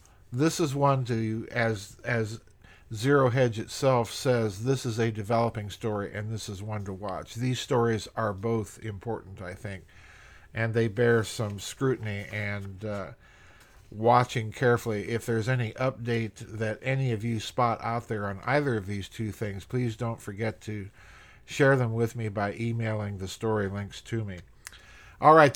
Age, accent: 50-69, American